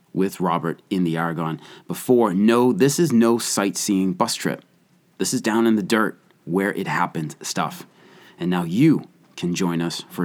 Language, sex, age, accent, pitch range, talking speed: English, male, 30-49, American, 90-130 Hz, 175 wpm